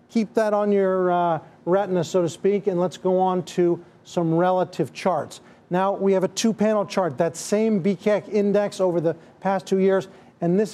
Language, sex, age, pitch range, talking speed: English, male, 40-59, 180-225 Hz, 190 wpm